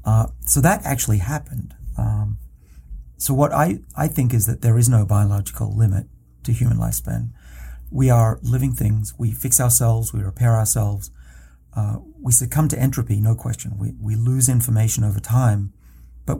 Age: 40-59